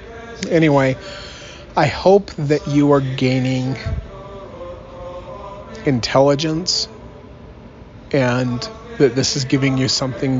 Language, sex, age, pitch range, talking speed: English, male, 30-49, 125-145 Hz, 85 wpm